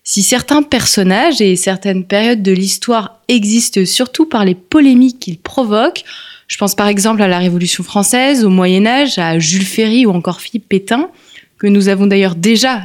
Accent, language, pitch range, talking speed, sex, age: French, French, 200-255 Hz, 175 wpm, female, 20-39